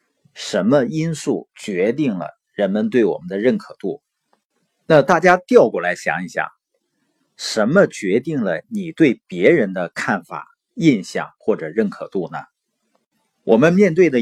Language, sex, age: Chinese, male, 50-69